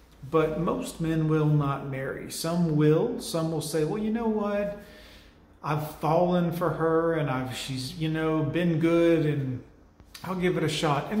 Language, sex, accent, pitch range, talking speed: English, male, American, 140-170 Hz, 175 wpm